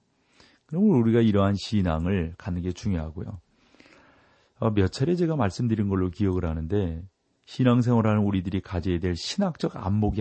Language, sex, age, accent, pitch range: Korean, male, 40-59, native, 95-145 Hz